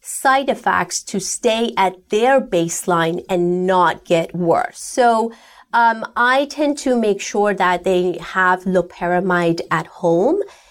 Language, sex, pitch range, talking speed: English, female, 180-230 Hz, 135 wpm